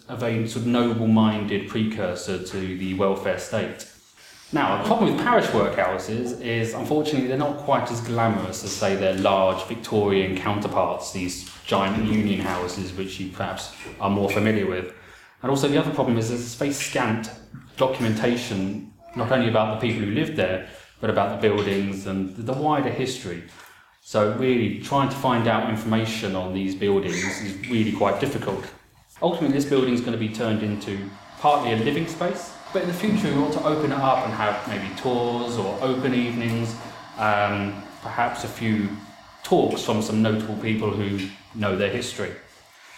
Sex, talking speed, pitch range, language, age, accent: male, 170 wpm, 100-130 Hz, English, 30-49, British